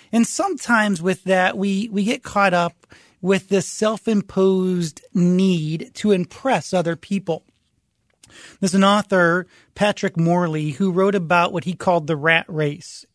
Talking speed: 140 wpm